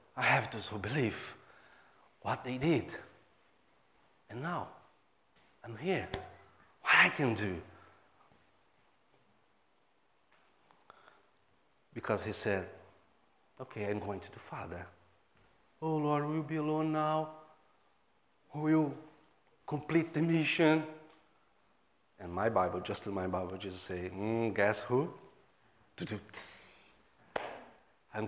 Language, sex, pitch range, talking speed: English, male, 95-130 Hz, 110 wpm